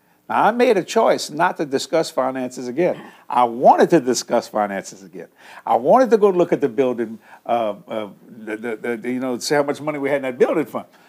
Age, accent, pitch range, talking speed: 60-79, American, 125-165 Hz, 205 wpm